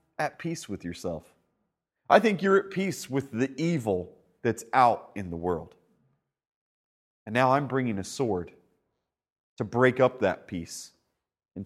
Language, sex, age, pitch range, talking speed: English, male, 30-49, 90-130 Hz, 150 wpm